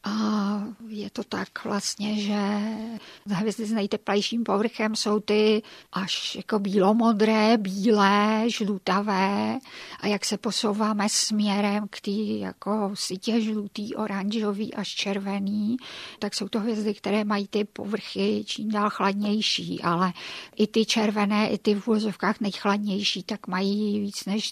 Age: 50-69